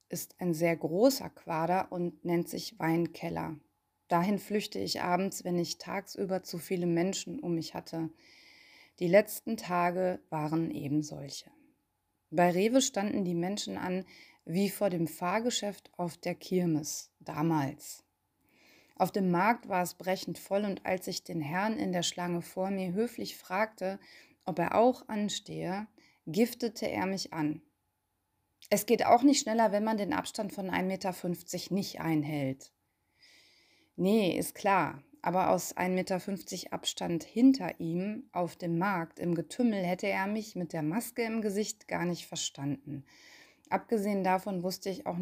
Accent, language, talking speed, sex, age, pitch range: German, German, 150 wpm, female, 20-39, 170-205 Hz